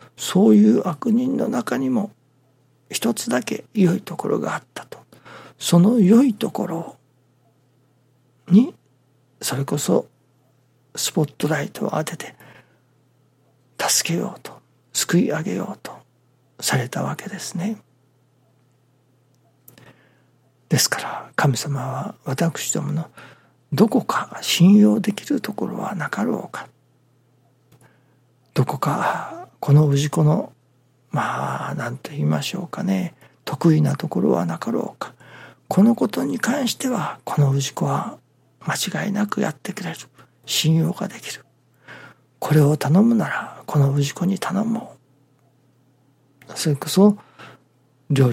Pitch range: 130-180 Hz